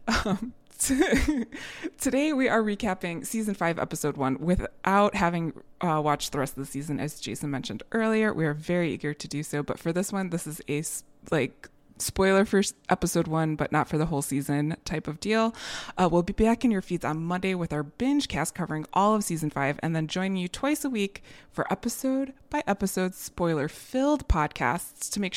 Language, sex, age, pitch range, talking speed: English, female, 20-39, 160-210 Hz, 200 wpm